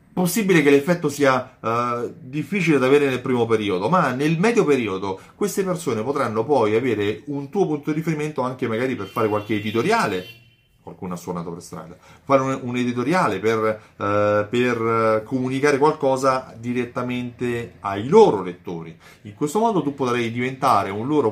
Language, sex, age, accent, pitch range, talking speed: Italian, male, 30-49, native, 105-140 Hz, 160 wpm